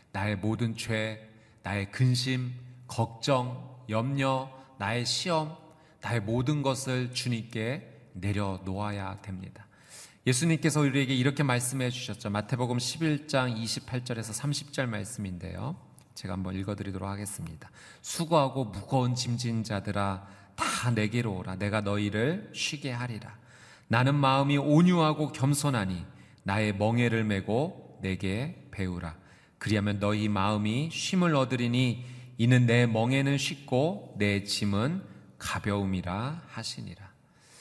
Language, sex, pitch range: Korean, male, 105-135 Hz